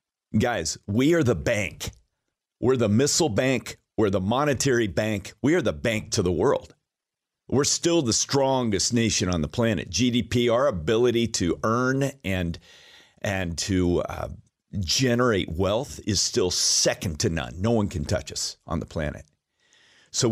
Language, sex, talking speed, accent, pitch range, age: English, male, 155 wpm, American, 90-115 Hz, 50-69